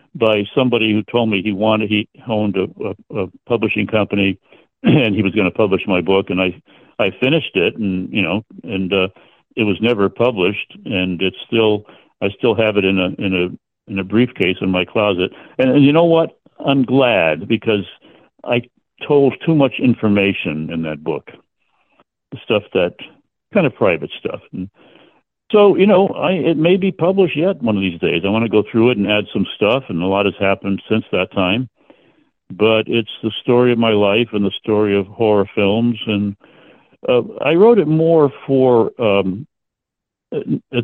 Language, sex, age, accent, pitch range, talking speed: English, male, 60-79, American, 95-125 Hz, 190 wpm